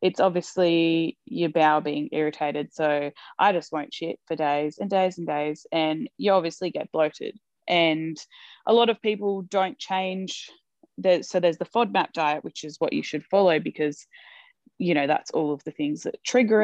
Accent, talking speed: Australian, 185 wpm